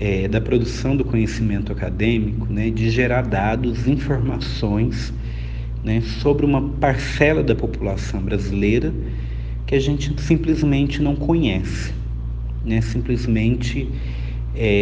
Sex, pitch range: male, 100-120 Hz